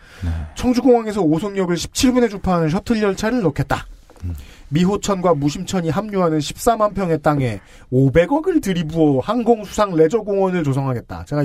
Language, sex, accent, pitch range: Korean, male, native, 125-200 Hz